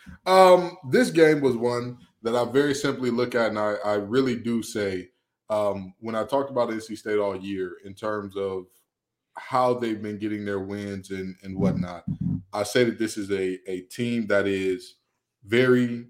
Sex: male